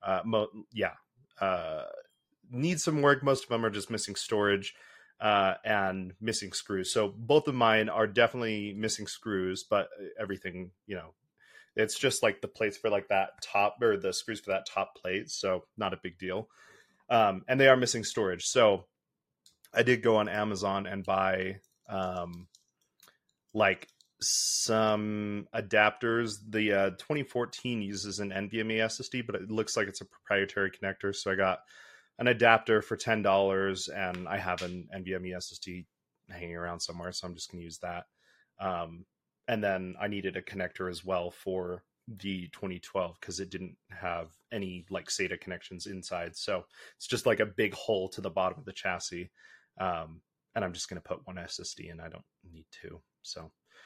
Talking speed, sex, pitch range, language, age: 170 wpm, male, 95-115 Hz, English, 30-49